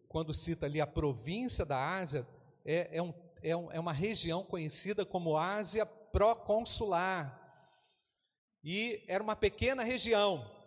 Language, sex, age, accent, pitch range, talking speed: Portuguese, male, 40-59, Brazilian, 175-235 Hz, 135 wpm